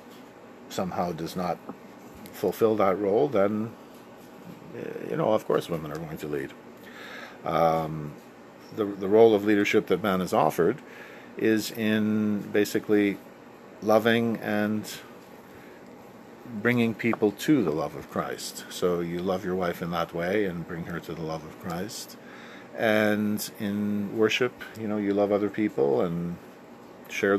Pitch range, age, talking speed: 85-105 Hz, 50-69, 140 wpm